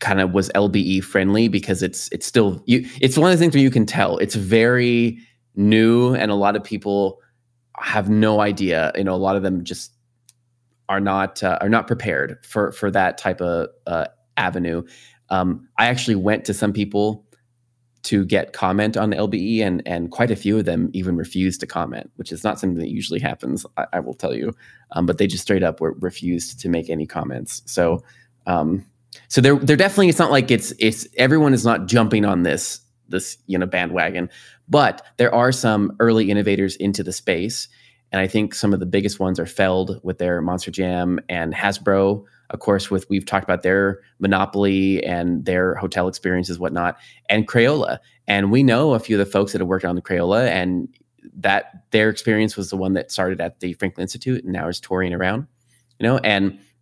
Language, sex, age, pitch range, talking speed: English, male, 20-39, 95-115 Hz, 205 wpm